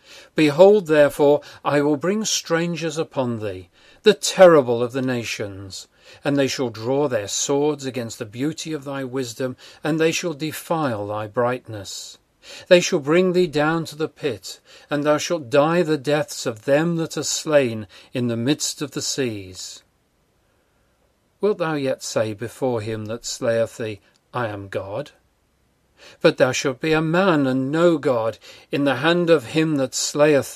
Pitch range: 120-160 Hz